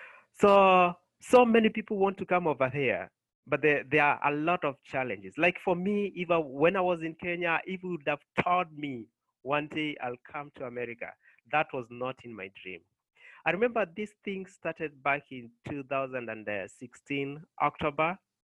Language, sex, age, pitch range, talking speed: English, male, 30-49, 140-195 Hz, 170 wpm